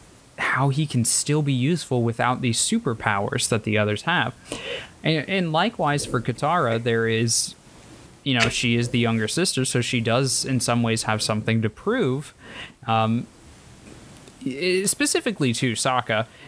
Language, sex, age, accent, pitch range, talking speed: English, male, 20-39, American, 115-150 Hz, 150 wpm